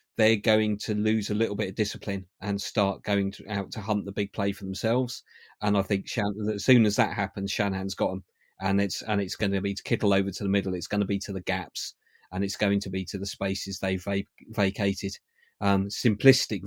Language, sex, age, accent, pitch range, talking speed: English, male, 40-59, British, 95-105 Hz, 240 wpm